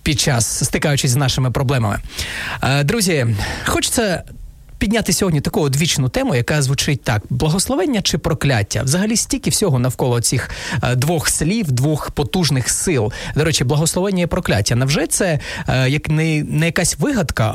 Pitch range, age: 125-175 Hz, 30-49